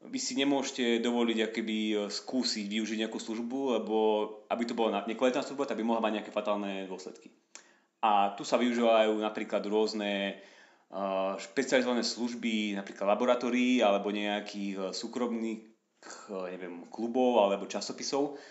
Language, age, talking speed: Slovak, 30-49, 130 wpm